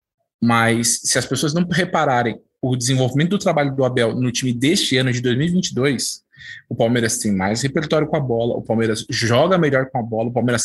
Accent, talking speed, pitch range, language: Brazilian, 195 wpm, 130-205 Hz, Portuguese